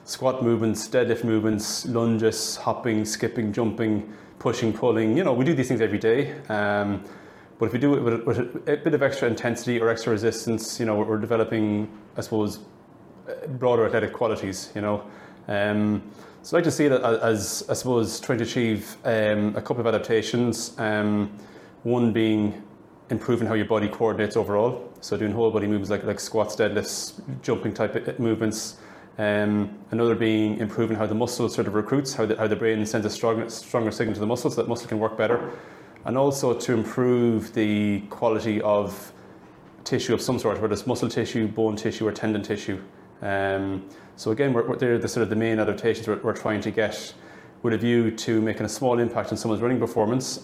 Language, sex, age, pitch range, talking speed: English, male, 20-39, 105-115 Hz, 195 wpm